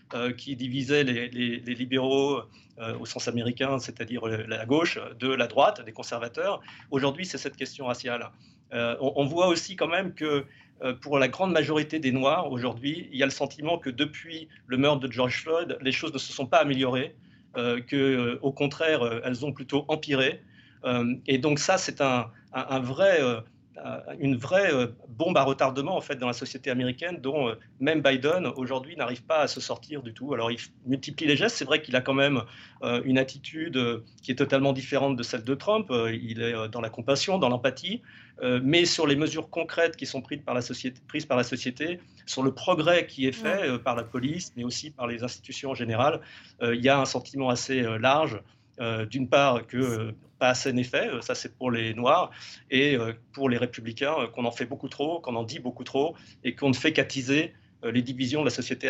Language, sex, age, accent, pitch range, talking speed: French, male, 40-59, French, 120-145 Hz, 205 wpm